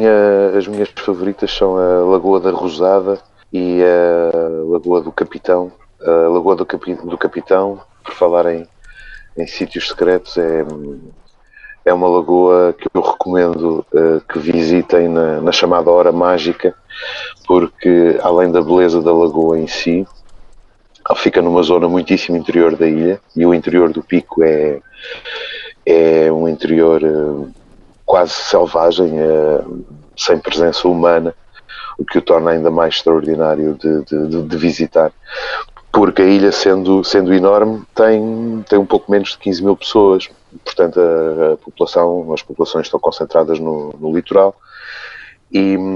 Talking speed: 135 wpm